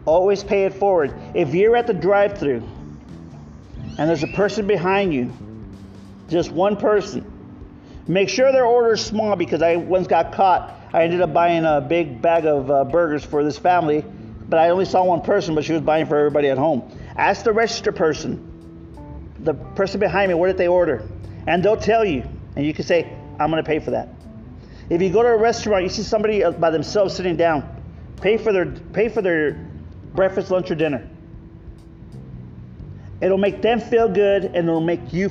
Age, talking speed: 40-59, 195 wpm